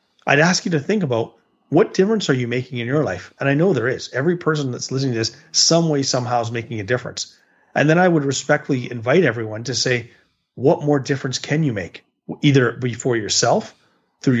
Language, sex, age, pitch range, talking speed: English, male, 30-49, 120-150 Hz, 210 wpm